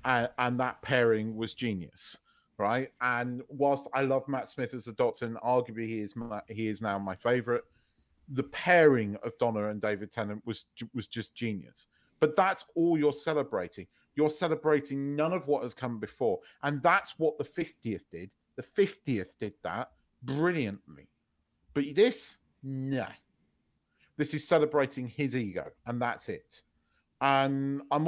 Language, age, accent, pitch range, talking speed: English, 40-59, British, 120-170 Hz, 160 wpm